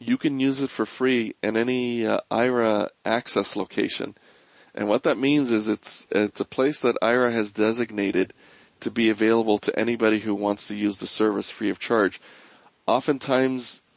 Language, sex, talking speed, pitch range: English, male, 170 wpm, 105-125 Hz